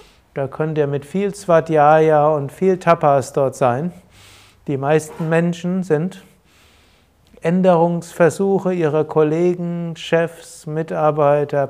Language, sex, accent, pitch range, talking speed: German, male, German, 140-170 Hz, 105 wpm